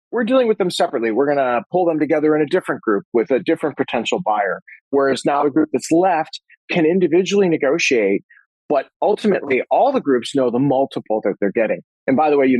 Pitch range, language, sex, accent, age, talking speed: 120-160 Hz, English, male, American, 40-59, 215 wpm